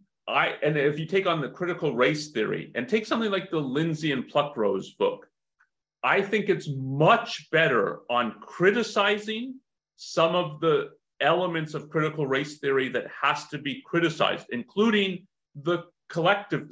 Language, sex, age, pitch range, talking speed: English, male, 30-49, 150-200 Hz, 150 wpm